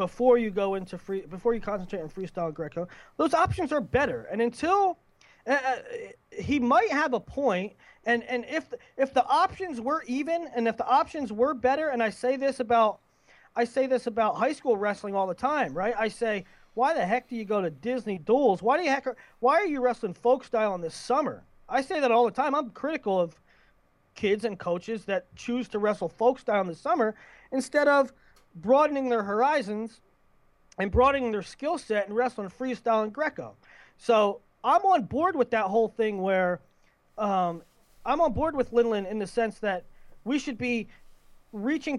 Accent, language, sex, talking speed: American, English, male, 195 wpm